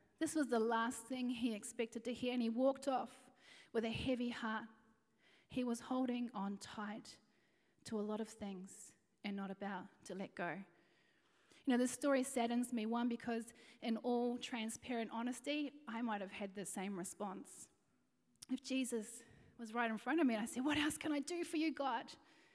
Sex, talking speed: female, 190 wpm